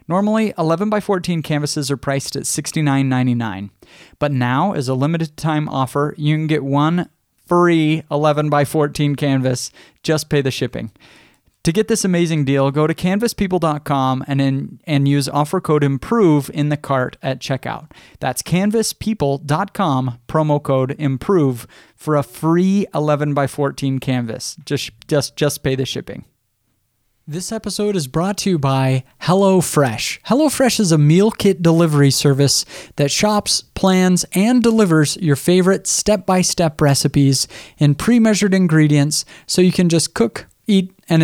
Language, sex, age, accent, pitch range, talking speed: English, male, 30-49, American, 140-180 Hz, 145 wpm